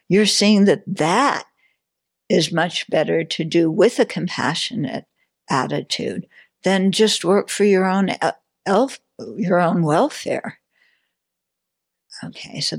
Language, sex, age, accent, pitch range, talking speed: English, female, 60-79, American, 170-220 Hz, 115 wpm